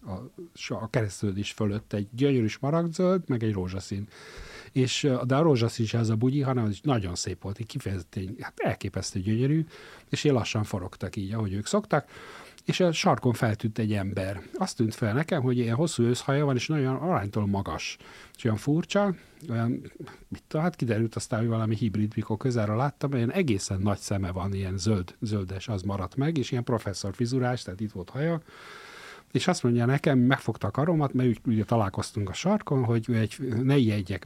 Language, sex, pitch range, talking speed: Hungarian, male, 105-130 Hz, 180 wpm